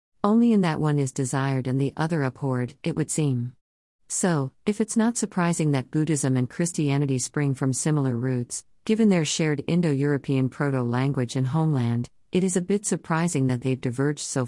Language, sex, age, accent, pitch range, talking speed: English, female, 50-69, American, 130-170 Hz, 180 wpm